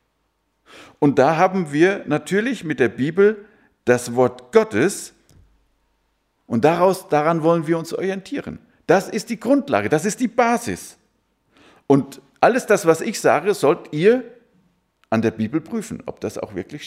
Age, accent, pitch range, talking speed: 50-69, German, 150-230 Hz, 150 wpm